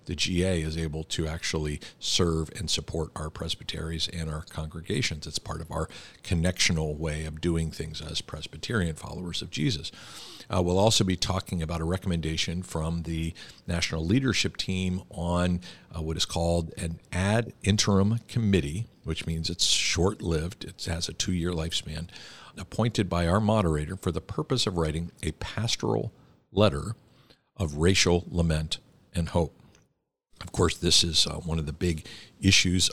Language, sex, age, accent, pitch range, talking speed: English, male, 50-69, American, 80-95 Hz, 155 wpm